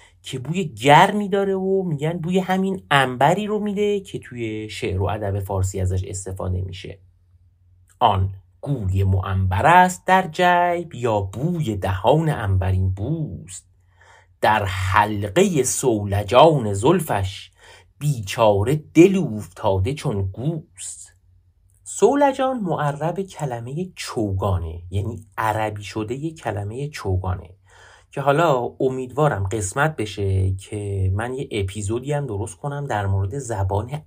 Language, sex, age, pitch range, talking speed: Persian, male, 30-49, 95-155 Hz, 115 wpm